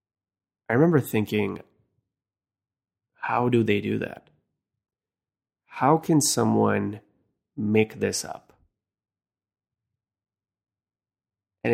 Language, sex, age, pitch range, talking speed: English, male, 20-39, 95-110 Hz, 75 wpm